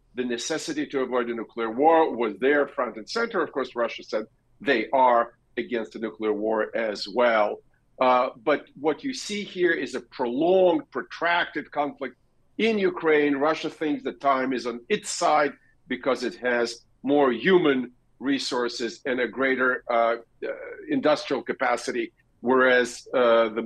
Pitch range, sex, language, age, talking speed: 120-150 Hz, male, English, 50-69, 155 wpm